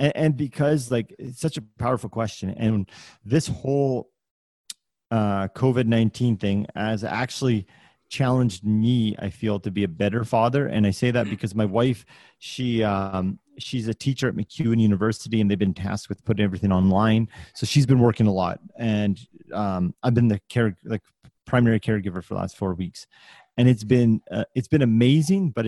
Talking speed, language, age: 180 wpm, English, 30-49